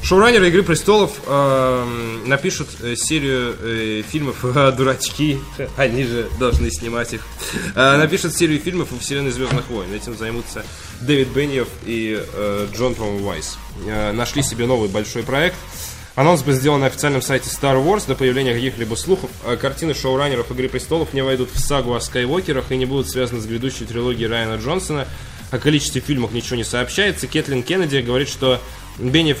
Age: 10-29